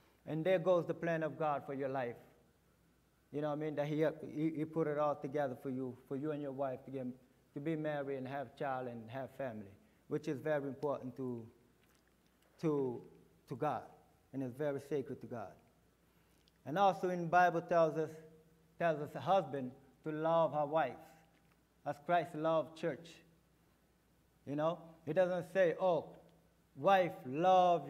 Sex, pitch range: male, 140-170 Hz